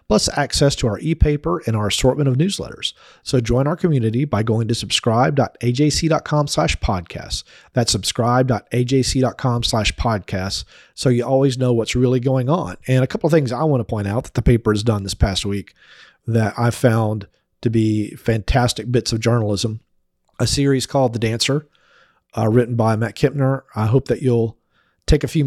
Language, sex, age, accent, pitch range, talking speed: English, male, 40-59, American, 115-140 Hz, 175 wpm